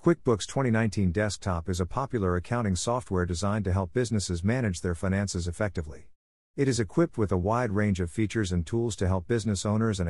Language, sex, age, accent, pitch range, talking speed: English, male, 50-69, American, 90-115 Hz, 190 wpm